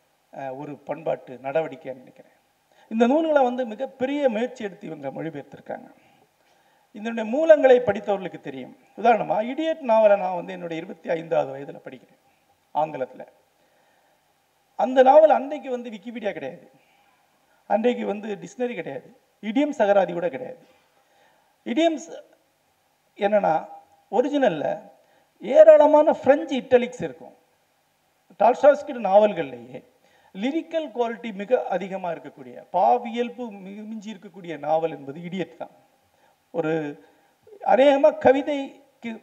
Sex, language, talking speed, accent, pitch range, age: male, Tamil, 100 wpm, native, 175-270 Hz, 50-69